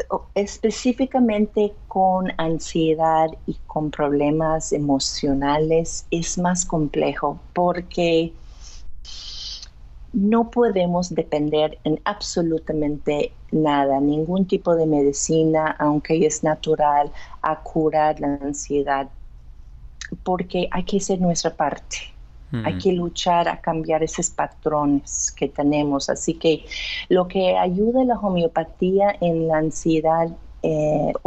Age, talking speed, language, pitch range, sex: 40-59, 105 wpm, Spanish, 150-175 Hz, female